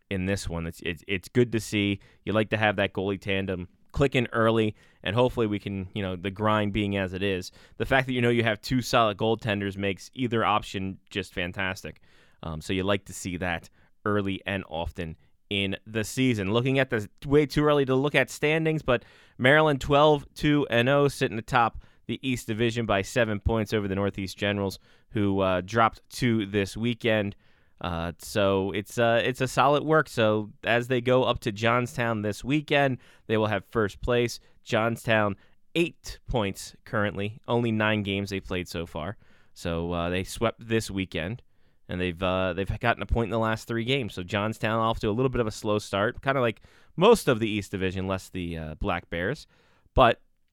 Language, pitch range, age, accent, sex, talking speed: English, 95-120 Hz, 20-39, American, male, 195 wpm